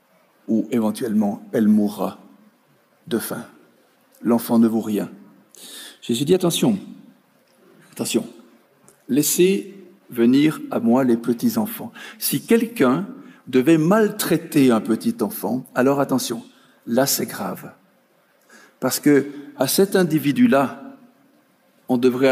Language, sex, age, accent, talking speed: French, male, 60-79, French, 100 wpm